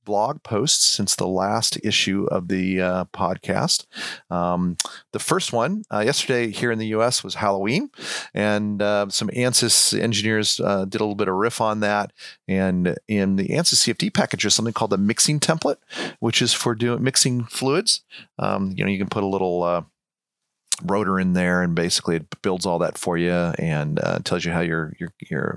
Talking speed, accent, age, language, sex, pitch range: 195 wpm, American, 40-59, English, male, 95-120 Hz